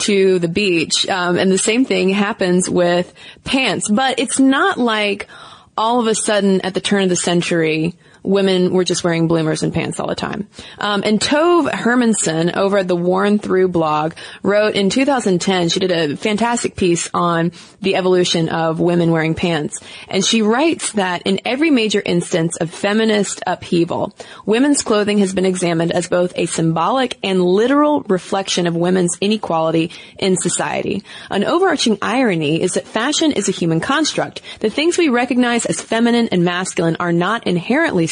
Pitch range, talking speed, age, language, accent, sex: 175-225 Hz, 170 wpm, 20-39, English, American, female